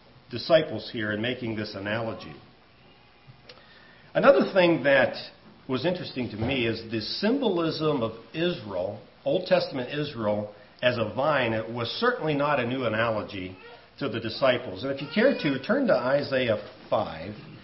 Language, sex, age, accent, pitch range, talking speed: English, male, 50-69, American, 110-160 Hz, 145 wpm